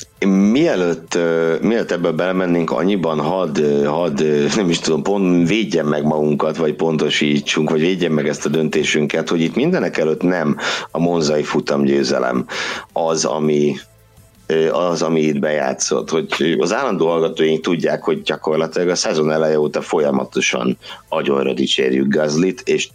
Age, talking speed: 60-79, 140 wpm